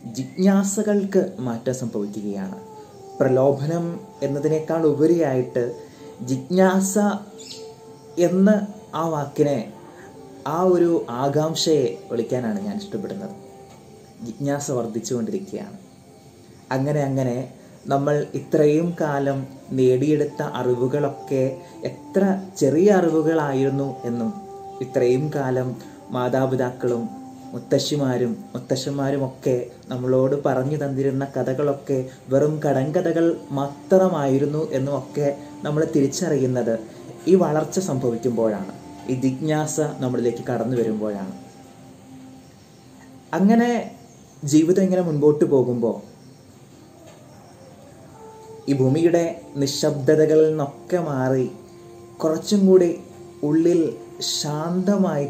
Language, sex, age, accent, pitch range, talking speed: Malayalam, male, 20-39, native, 130-165 Hz, 75 wpm